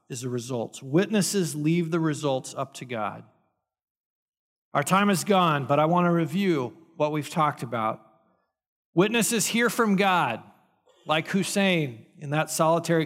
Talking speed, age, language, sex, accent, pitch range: 145 wpm, 40-59, English, male, American, 145-185 Hz